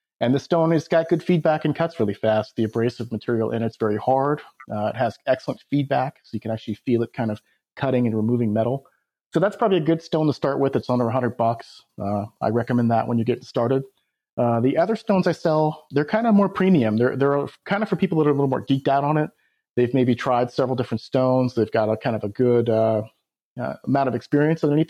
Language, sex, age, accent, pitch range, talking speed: English, male, 30-49, American, 120-155 Hz, 245 wpm